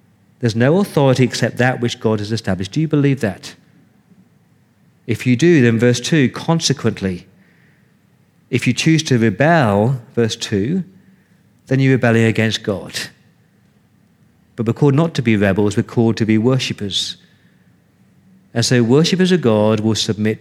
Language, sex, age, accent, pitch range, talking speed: English, male, 40-59, British, 115-145 Hz, 150 wpm